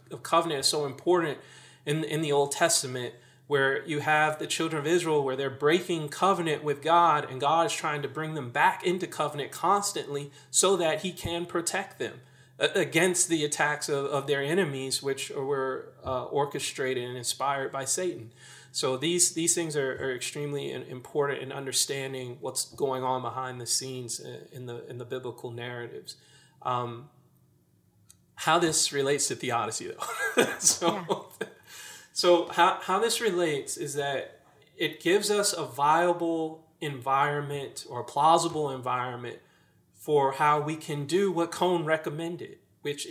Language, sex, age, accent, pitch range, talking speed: English, male, 30-49, American, 130-165 Hz, 155 wpm